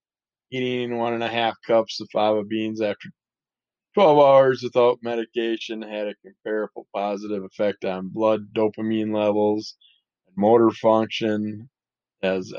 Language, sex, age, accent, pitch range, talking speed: English, male, 20-39, American, 105-120 Hz, 130 wpm